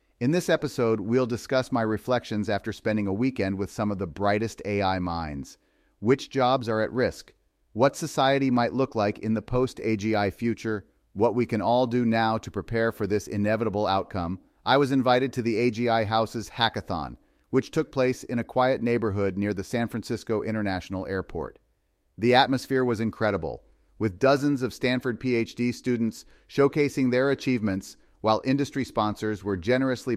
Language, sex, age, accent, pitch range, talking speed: English, male, 40-59, American, 105-130 Hz, 165 wpm